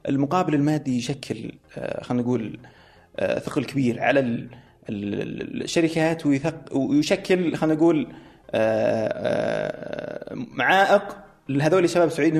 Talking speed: 80 wpm